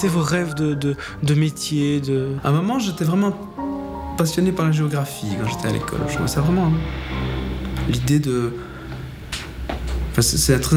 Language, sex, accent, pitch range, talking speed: French, male, French, 105-150 Hz, 160 wpm